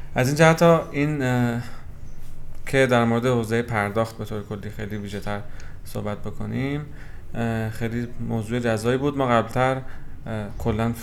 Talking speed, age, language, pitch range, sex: 135 wpm, 30-49, Persian, 105-125 Hz, male